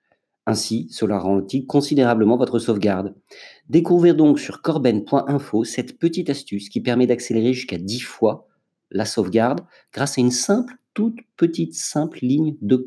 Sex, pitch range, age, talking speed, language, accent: male, 115-150 Hz, 50-69, 140 wpm, French, French